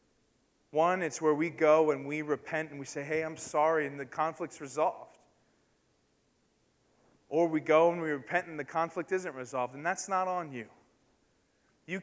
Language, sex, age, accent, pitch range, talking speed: English, male, 30-49, American, 140-180 Hz, 175 wpm